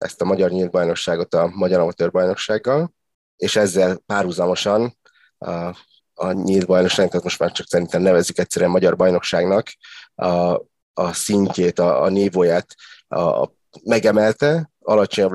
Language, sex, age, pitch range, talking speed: Hungarian, male, 30-49, 90-105 Hz, 130 wpm